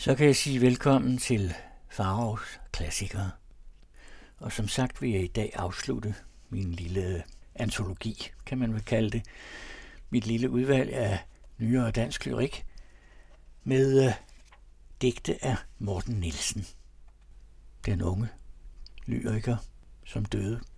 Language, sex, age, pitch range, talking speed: Danish, male, 60-79, 95-120 Hz, 120 wpm